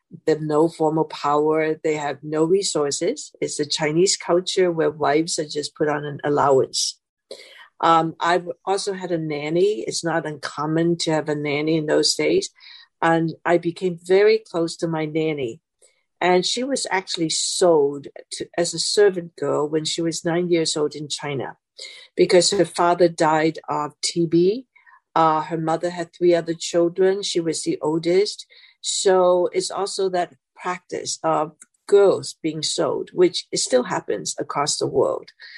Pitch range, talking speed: 155-190 Hz, 160 wpm